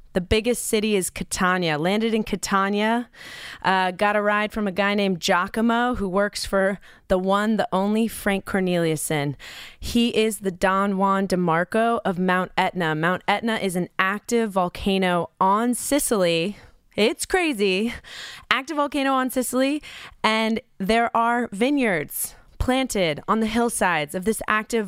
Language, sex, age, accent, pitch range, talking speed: English, female, 20-39, American, 190-225 Hz, 145 wpm